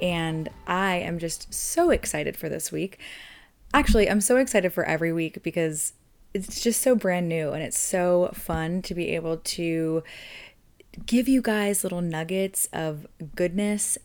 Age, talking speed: 20-39, 160 wpm